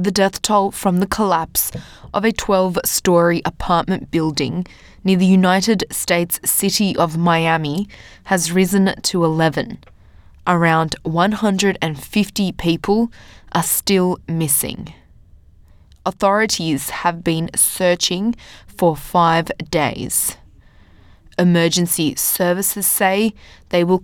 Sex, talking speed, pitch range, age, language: female, 100 wpm, 160-195 Hz, 20-39, English